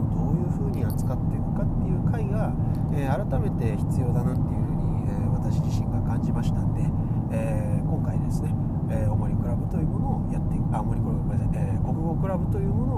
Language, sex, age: Japanese, male, 40-59